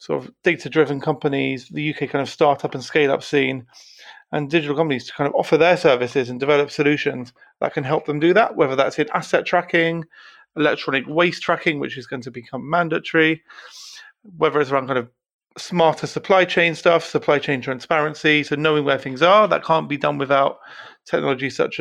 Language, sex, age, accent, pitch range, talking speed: English, male, 40-59, British, 135-170 Hz, 185 wpm